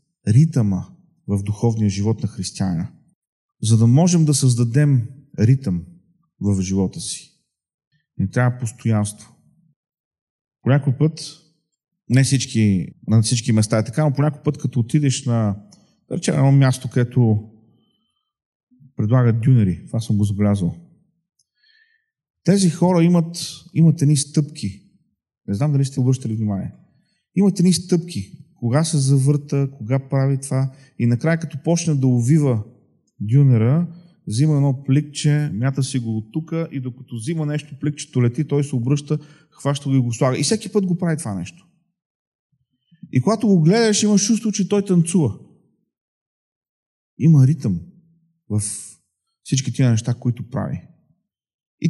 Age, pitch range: 40-59, 120-160 Hz